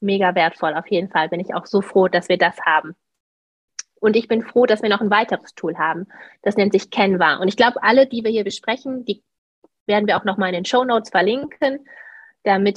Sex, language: female, German